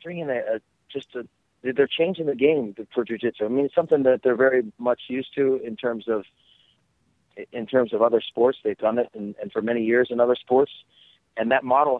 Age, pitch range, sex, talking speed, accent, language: 40-59, 115-140 Hz, male, 205 wpm, American, English